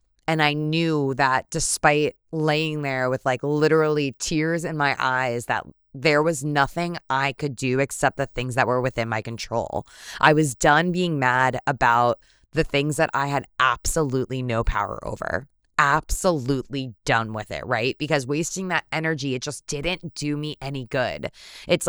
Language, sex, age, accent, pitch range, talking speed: English, female, 20-39, American, 120-155 Hz, 165 wpm